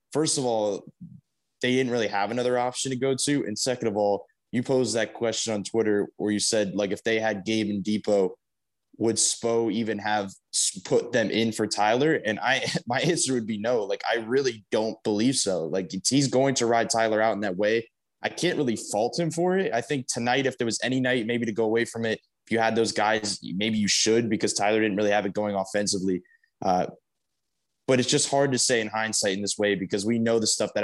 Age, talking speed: 20-39, 230 wpm